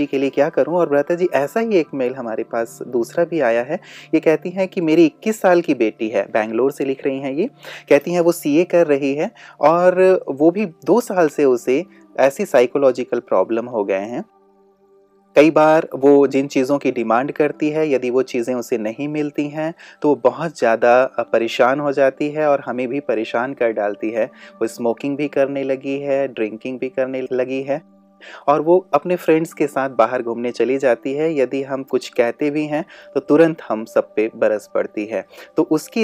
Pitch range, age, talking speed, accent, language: 120-155 Hz, 30-49, 130 wpm, native, Hindi